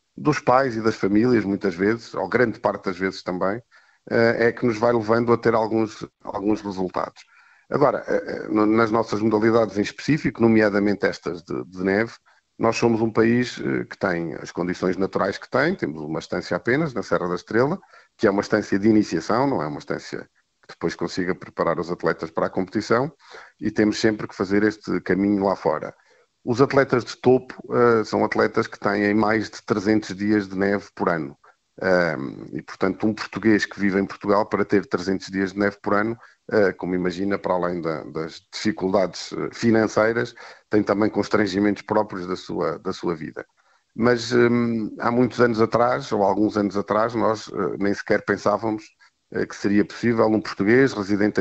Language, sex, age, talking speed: Portuguese, male, 50-69, 170 wpm